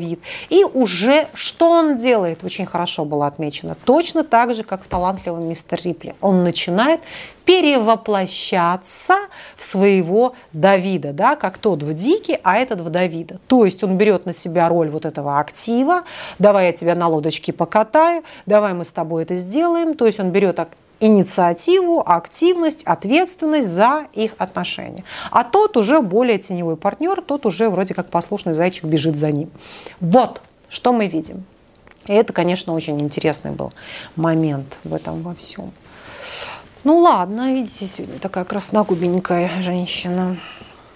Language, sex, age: Russian, female, 30-49